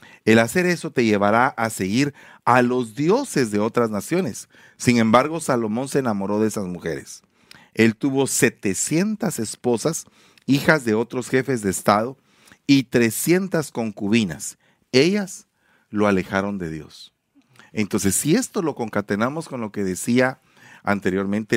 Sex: male